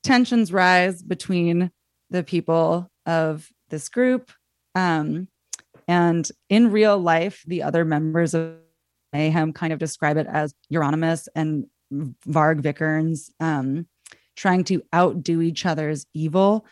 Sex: female